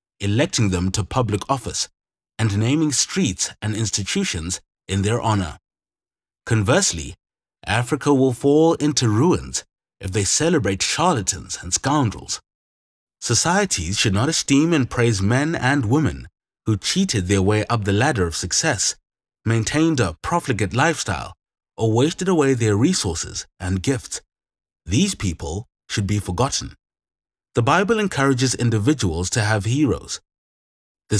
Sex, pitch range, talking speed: male, 95-135 Hz, 130 wpm